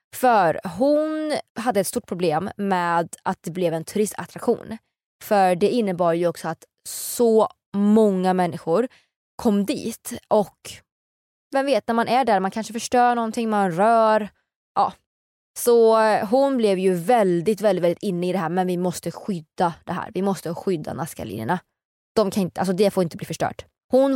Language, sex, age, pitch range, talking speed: Swedish, female, 20-39, 175-230 Hz, 165 wpm